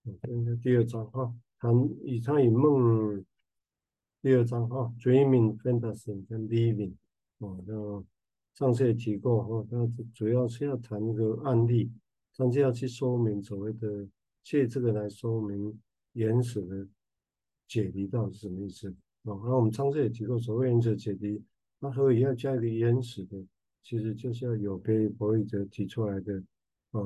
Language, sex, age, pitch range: Chinese, male, 50-69, 100-120 Hz